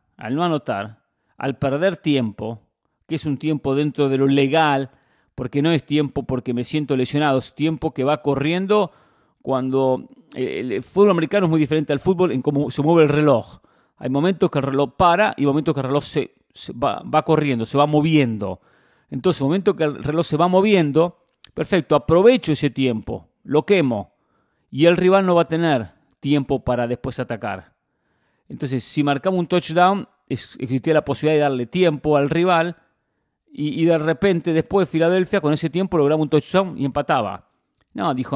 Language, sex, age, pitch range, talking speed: English, male, 40-59, 130-165 Hz, 180 wpm